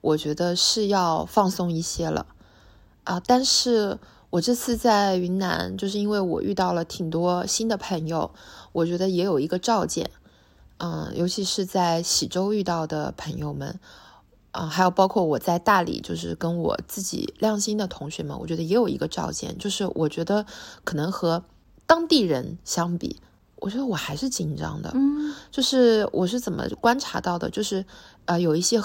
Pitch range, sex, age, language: 165-210 Hz, female, 20-39, Chinese